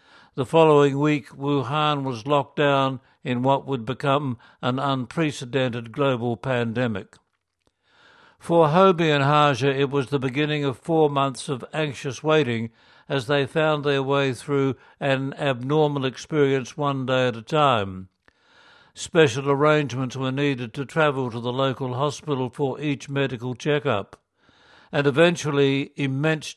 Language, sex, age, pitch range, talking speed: English, male, 60-79, 130-145 Hz, 135 wpm